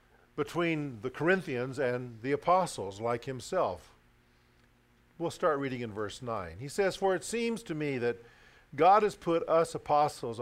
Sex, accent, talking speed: male, American, 155 wpm